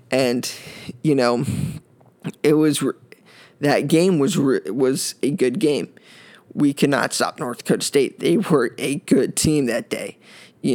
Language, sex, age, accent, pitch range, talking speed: English, male, 20-39, American, 130-155 Hz, 155 wpm